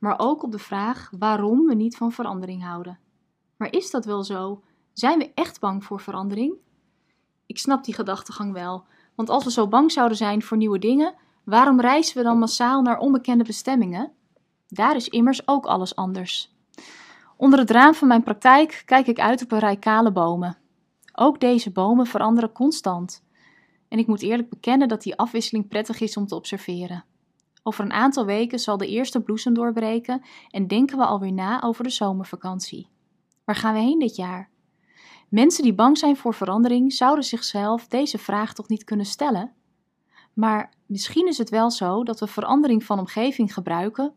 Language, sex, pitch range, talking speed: Dutch, female, 200-250 Hz, 180 wpm